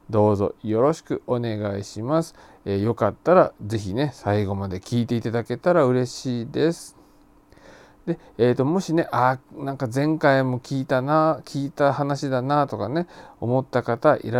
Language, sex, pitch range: Japanese, male, 105-145 Hz